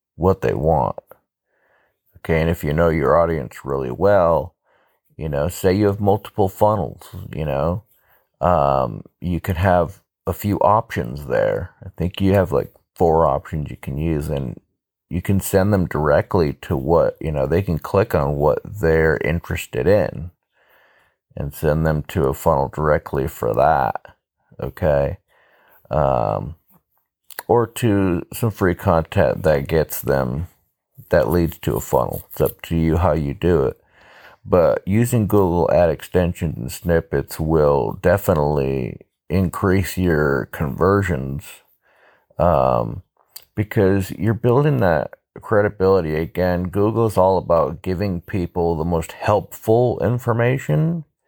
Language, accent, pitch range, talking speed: English, American, 80-100 Hz, 140 wpm